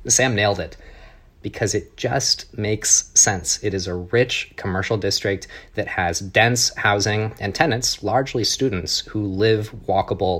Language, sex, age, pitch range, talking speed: English, male, 30-49, 90-110 Hz, 145 wpm